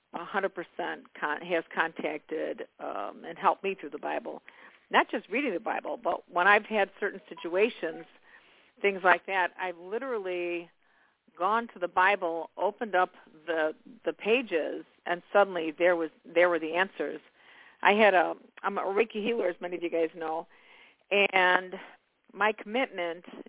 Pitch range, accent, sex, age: 170-210 Hz, American, female, 50-69